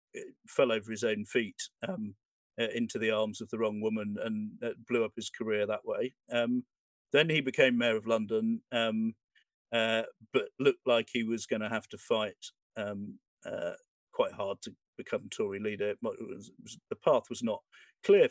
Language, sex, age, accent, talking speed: English, male, 50-69, British, 190 wpm